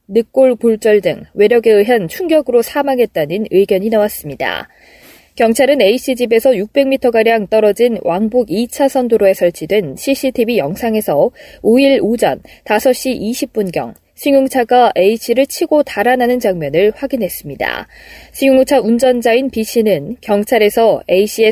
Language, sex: Korean, female